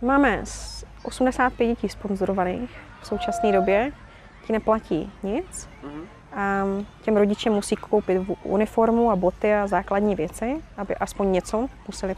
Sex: female